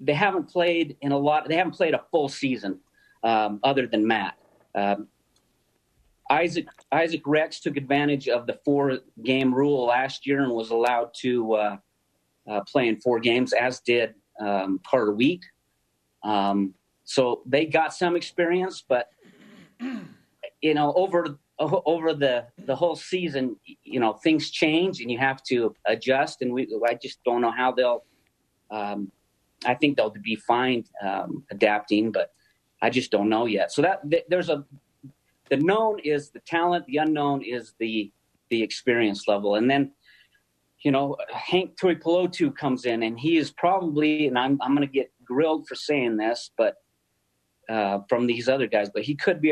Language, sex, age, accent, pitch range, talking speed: English, male, 40-59, American, 110-150 Hz, 165 wpm